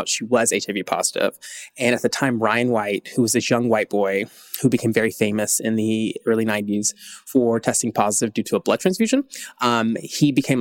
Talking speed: 200 wpm